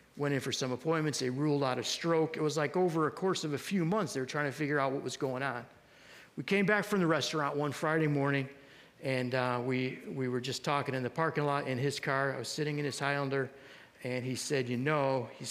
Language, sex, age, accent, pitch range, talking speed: English, male, 50-69, American, 130-150 Hz, 250 wpm